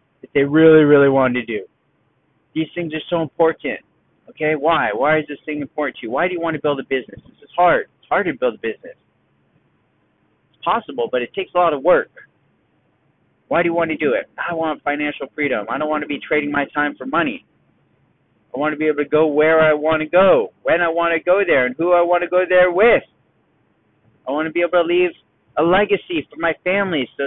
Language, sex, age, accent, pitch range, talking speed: English, male, 30-49, American, 145-175 Hz, 230 wpm